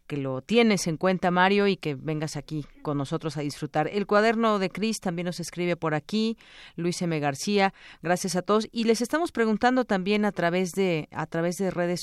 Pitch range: 160-205 Hz